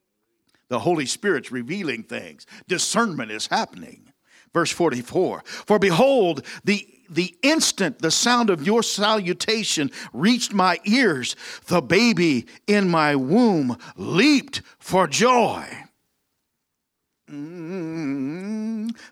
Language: English